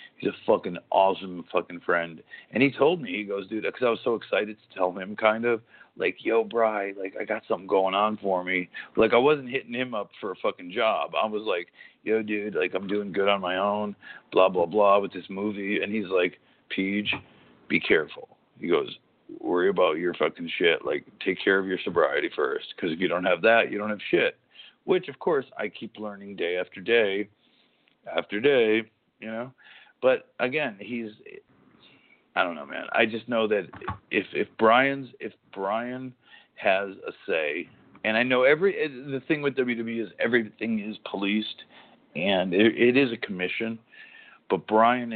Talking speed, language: 190 wpm, English